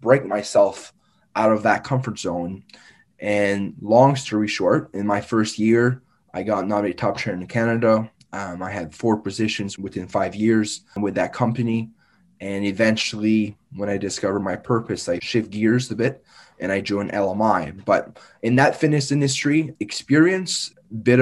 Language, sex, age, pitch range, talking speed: English, male, 20-39, 100-115 Hz, 160 wpm